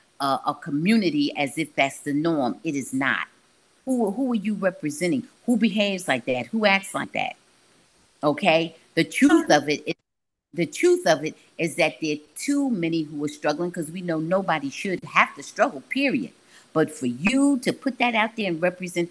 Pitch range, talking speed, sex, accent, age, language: 150-230 Hz, 190 wpm, female, American, 50-69, English